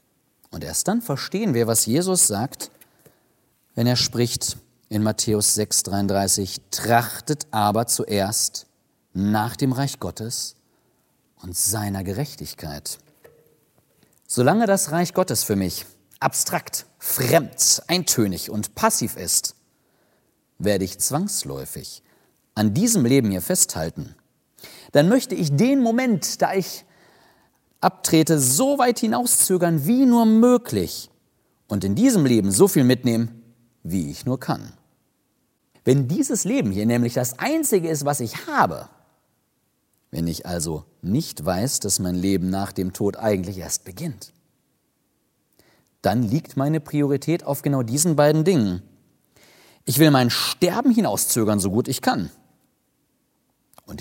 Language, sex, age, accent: German, male, 40-59, German